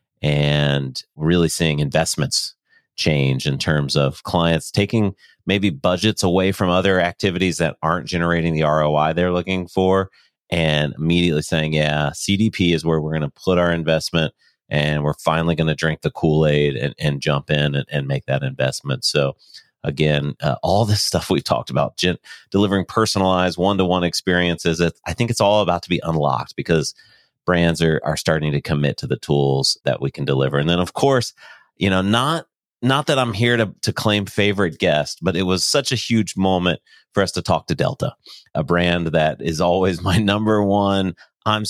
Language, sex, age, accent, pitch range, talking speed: English, male, 30-49, American, 75-95 Hz, 190 wpm